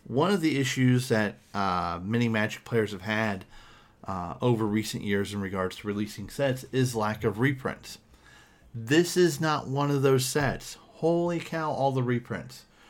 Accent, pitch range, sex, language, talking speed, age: American, 105-145 Hz, male, English, 165 wpm, 40-59